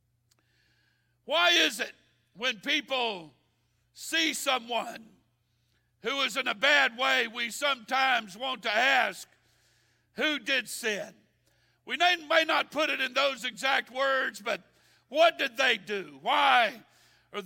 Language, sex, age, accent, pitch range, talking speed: English, male, 60-79, American, 220-290 Hz, 130 wpm